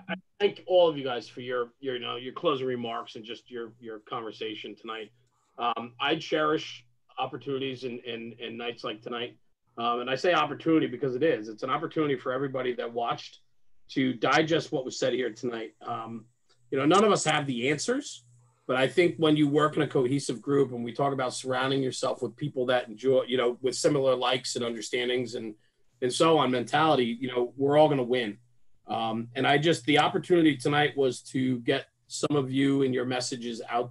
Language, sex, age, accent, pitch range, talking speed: English, male, 40-59, American, 120-145 Hz, 205 wpm